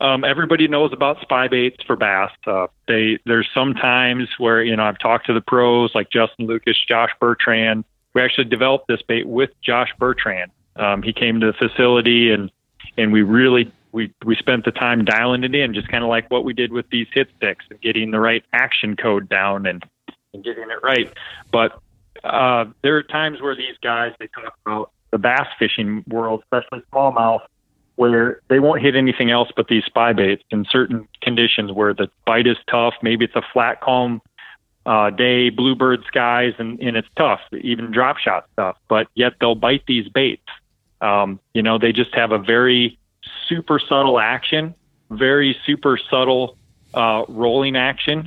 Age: 30-49